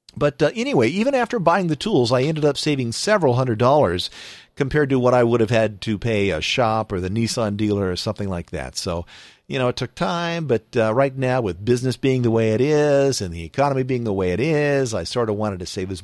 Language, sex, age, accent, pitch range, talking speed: English, male, 50-69, American, 95-130 Hz, 245 wpm